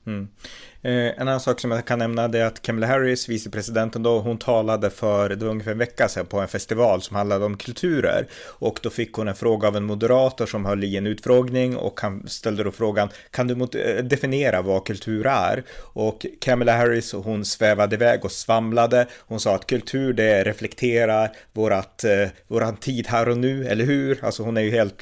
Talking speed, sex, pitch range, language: 190 wpm, male, 105-120 Hz, Swedish